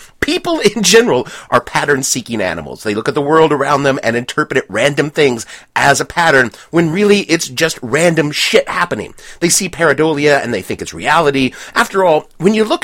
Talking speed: 190 wpm